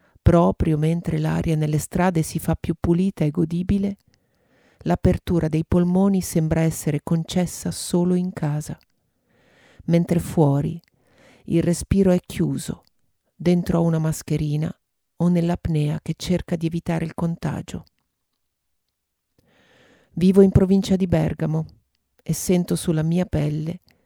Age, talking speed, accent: 40-59, 120 wpm, native